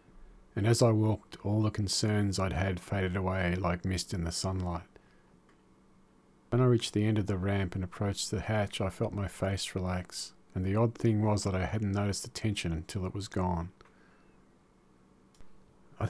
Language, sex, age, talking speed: English, male, 40-59, 185 wpm